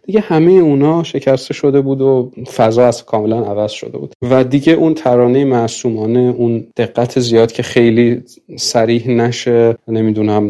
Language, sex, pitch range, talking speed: Persian, male, 105-125 Hz, 145 wpm